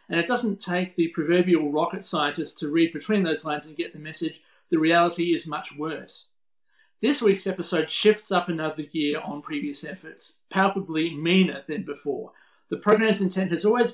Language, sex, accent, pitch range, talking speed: English, male, Australian, 155-190 Hz, 175 wpm